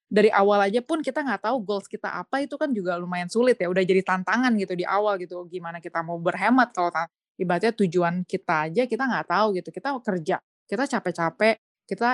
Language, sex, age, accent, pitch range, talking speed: Indonesian, female, 20-39, native, 175-220 Hz, 205 wpm